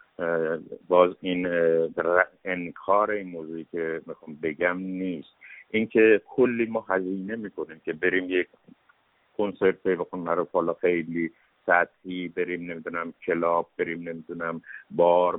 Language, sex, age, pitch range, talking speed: English, male, 60-79, 80-100 Hz, 115 wpm